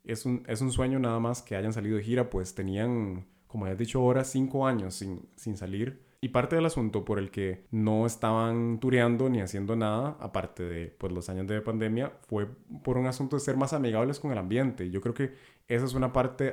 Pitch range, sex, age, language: 100-130 Hz, male, 20-39, Spanish